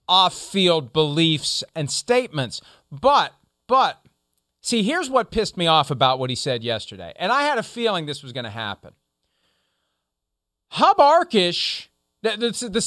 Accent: American